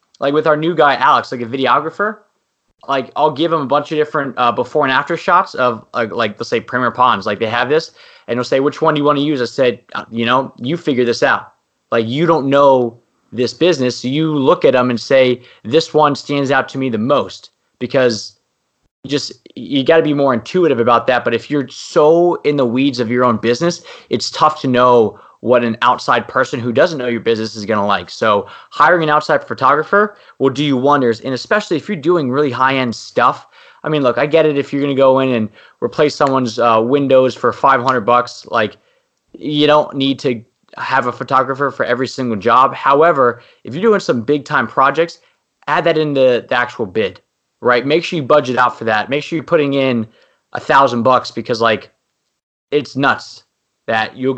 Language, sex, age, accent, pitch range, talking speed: English, male, 20-39, American, 125-150 Hz, 215 wpm